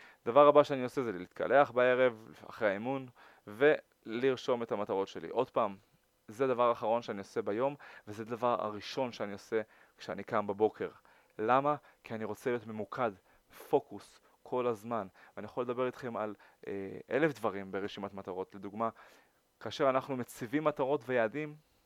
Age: 20-39